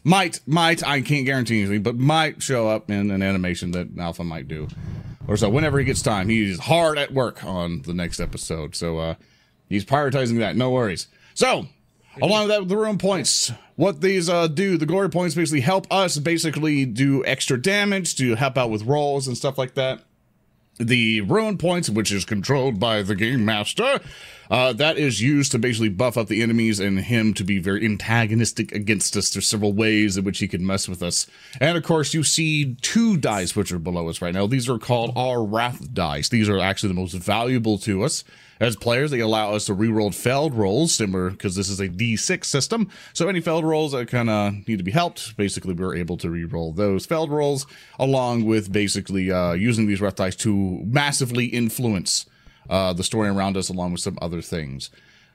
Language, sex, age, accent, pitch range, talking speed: English, male, 30-49, American, 100-150 Hz, 205 wpm